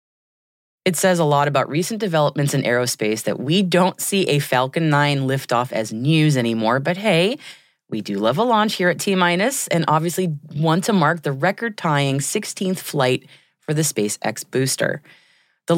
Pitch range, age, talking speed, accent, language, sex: 130-185 Hz, 30-49, 165 wpm, American, English, female